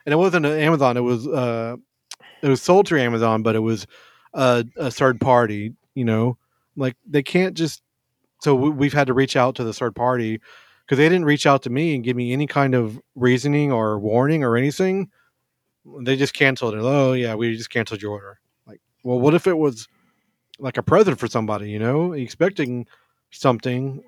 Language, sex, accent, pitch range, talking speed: English, male, American, 115-145 Hz, 200 wpm